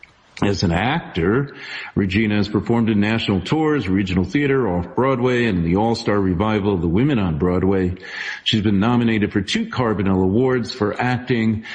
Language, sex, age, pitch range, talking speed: English, male, 50-69, 100-125 Hz, 155 wpm